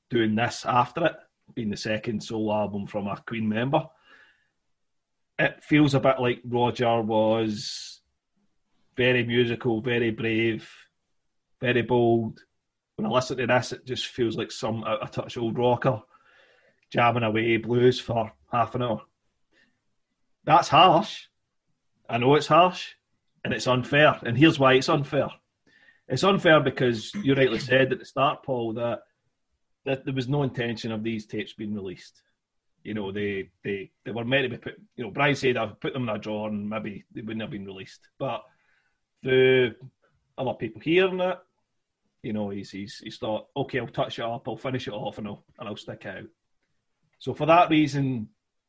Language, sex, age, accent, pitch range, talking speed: English, male, 30-49, British, 110-130 Hz, 170 wpm